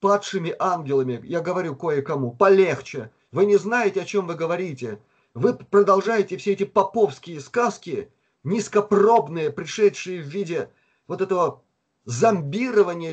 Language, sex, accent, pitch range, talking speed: Russian, male, native, 165-205 Hz, 120 wpm